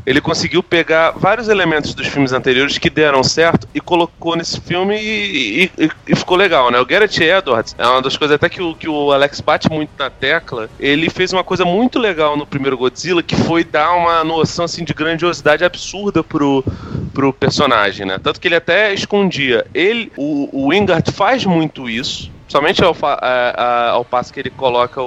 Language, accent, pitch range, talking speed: Portuguese, Brazilian, 130-170 Hz, 195 wpm